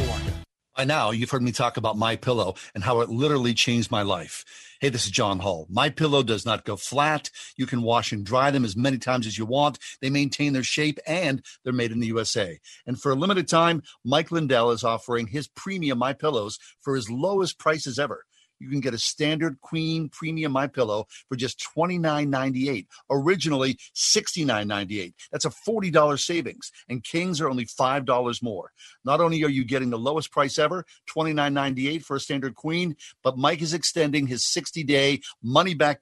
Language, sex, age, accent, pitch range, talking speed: English, male, 50-69, American, 120-150 Hz, 185 wpm